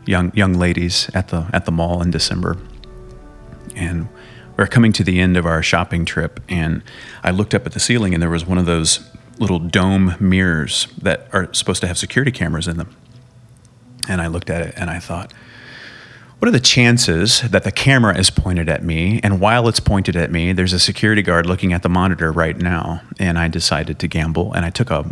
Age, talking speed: 30-49, 215 wpm